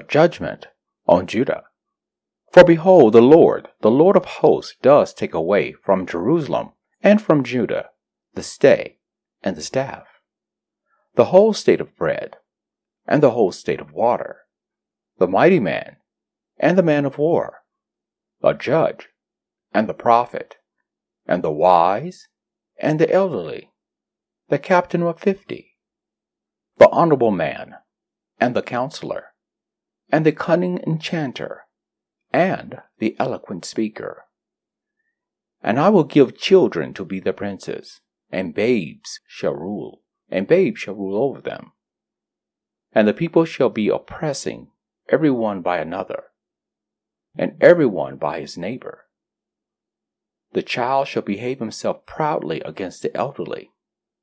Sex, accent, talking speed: male, American, 130 wpm